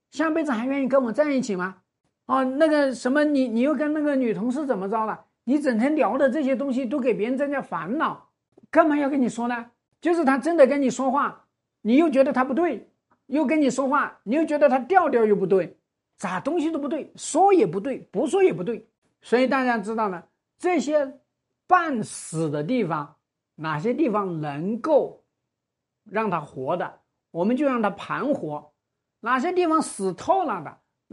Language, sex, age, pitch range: Chinese, male, 50-69, 205-300 Hz